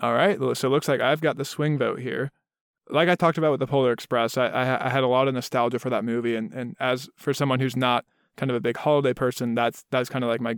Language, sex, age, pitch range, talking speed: English, male, 20-39, 125-145 Hz, 285 wpm